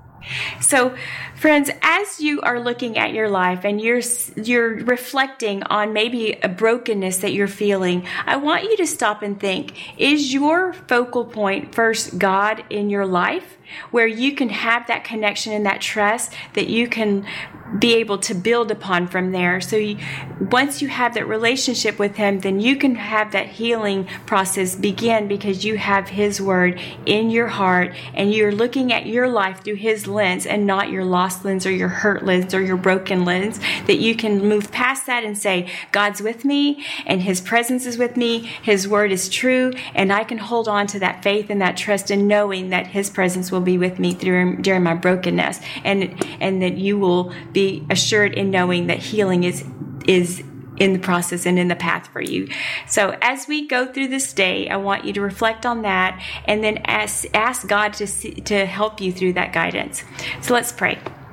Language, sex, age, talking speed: English, female, 30-49, 195 wpm